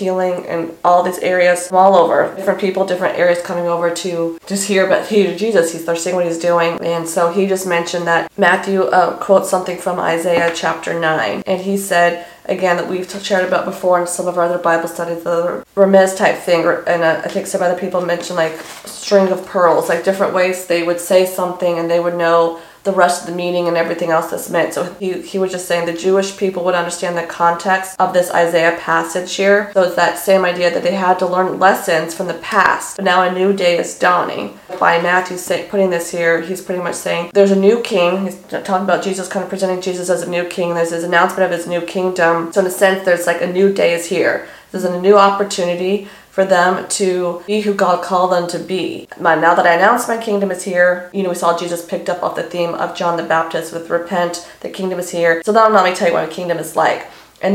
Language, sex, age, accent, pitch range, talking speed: English, female, 20-39, American, 170-190 Hz, 235 wpm